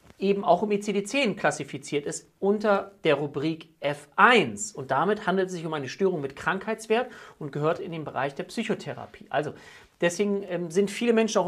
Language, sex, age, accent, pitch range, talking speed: German, male, 40-59, German, 155-225 Hz, 170 wpm